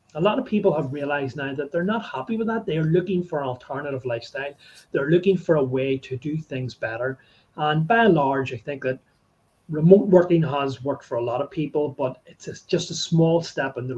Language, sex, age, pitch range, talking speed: English, male, 30-49, 130-165 Hz, 225 wpm